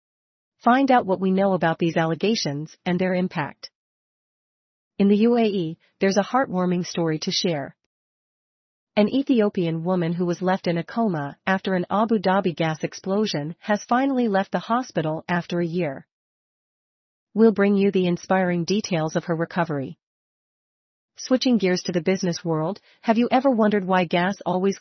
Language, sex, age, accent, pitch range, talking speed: English, female, 40-59, American, 170-205 Hz, 155 wpm